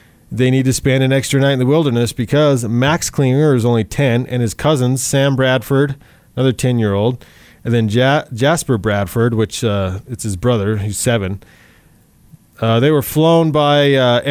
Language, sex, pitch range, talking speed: English, male, 115-140 Hz, 170 wpm